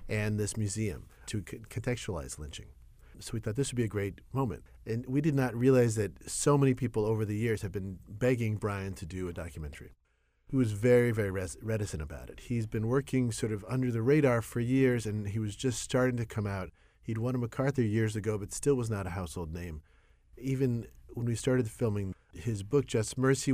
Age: 40-59